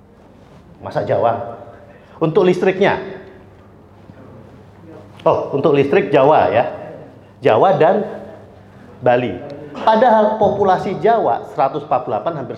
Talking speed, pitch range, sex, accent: 80 wpm, 115-170 Hz, male, native